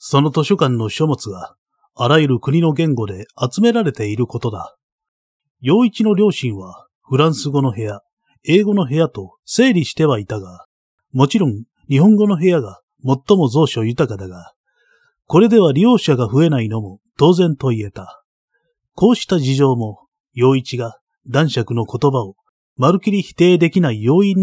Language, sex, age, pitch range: Japanese, male, 30-49, 120-185 Hz